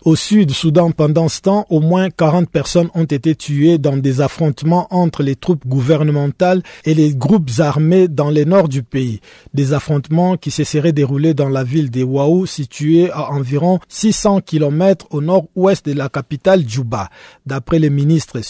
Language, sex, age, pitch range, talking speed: French, male, 50-69, 145-180 Hz, 175 wpm